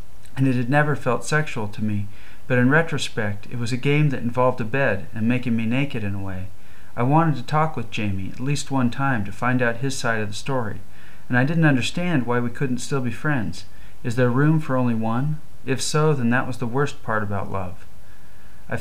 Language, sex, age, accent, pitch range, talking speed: English, male, 40-59, American, 105-135 Hz, 225 wpm